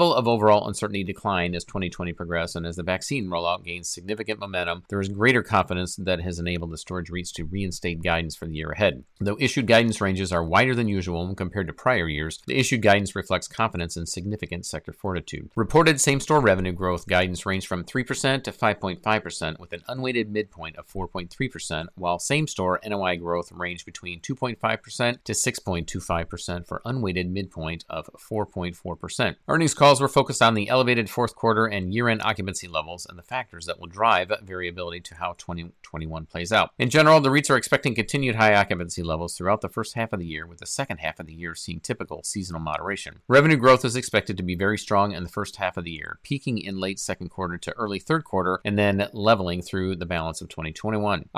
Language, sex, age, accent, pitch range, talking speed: English, male, 40-59, American, 85-110 Hz, 195 wpm